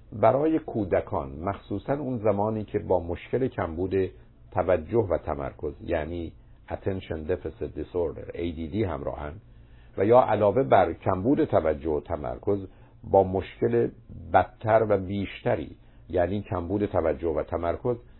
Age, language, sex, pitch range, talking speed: 50-69, Persian, male, 90-115 Hz, 120 wpm